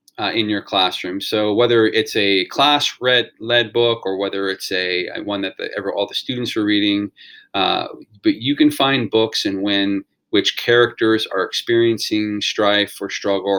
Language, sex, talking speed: English, male, 175 wpm